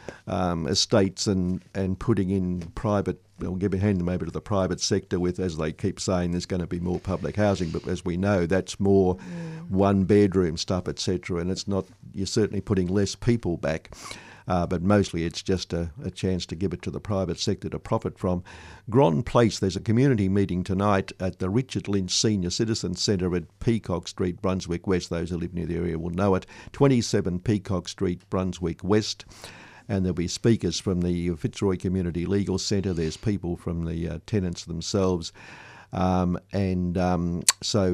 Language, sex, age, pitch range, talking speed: English, male, 50-69, 85-100 Hz, 185 wpm